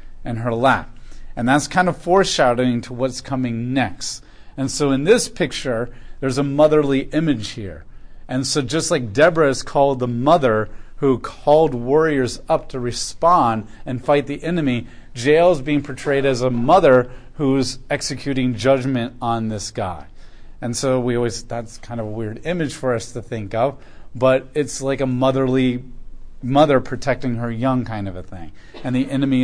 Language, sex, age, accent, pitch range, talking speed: English, male, 40-59, American, 125-160 Hz, 175 wpm